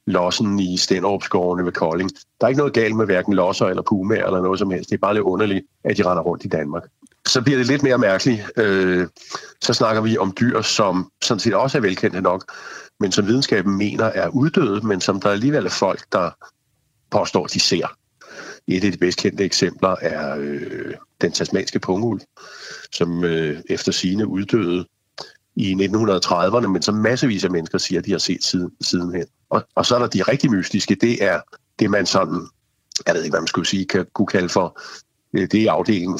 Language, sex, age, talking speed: Danish, male, 60-79, 195 wpm